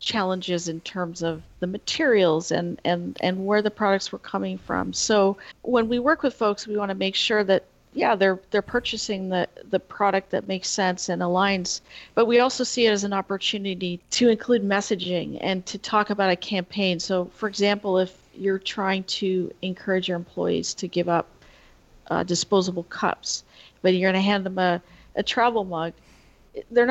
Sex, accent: female, American